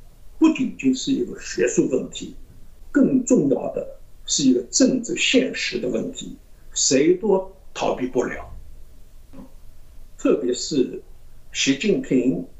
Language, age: Chinese, 60-79